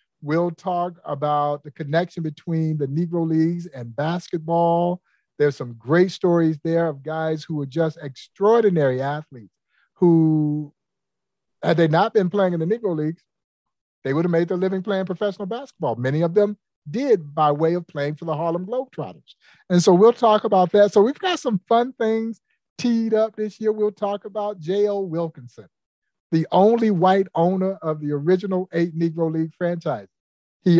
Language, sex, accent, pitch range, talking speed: English, male, American, 155-190 Hz, 170 wpm